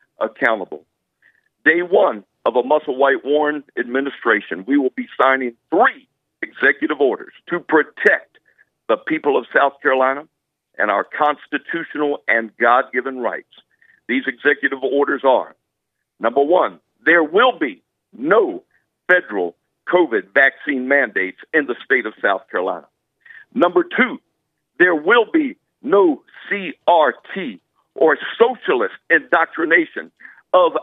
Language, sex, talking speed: English, male, 115 wpm